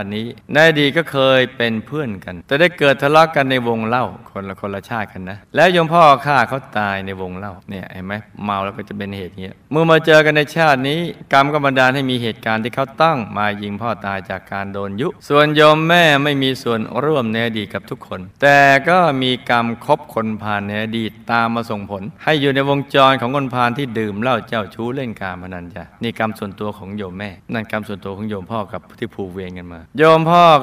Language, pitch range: Thai, 105-135 Hz